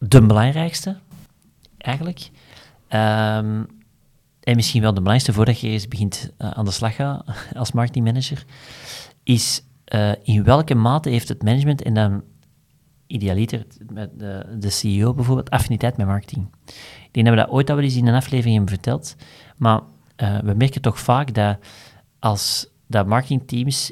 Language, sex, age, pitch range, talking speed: Dutch, male, 40-59, 110-135 Hz, 150 wpm